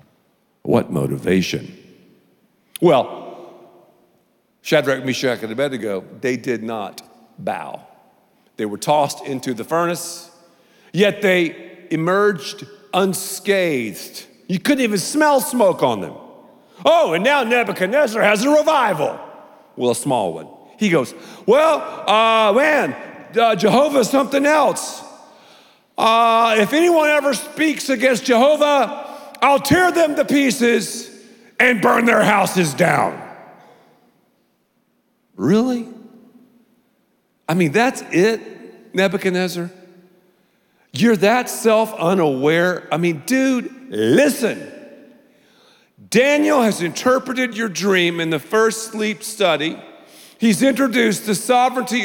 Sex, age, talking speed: male, 50-69, 105 wpm